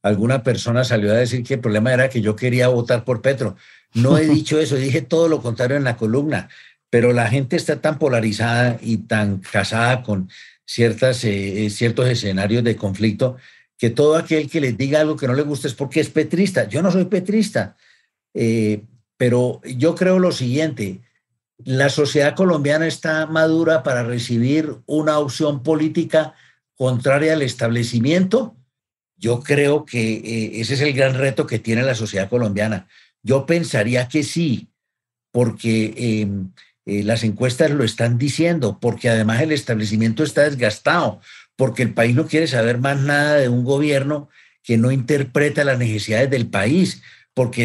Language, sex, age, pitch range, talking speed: English, male, 60-79, 115-150 Hz, 165 wpm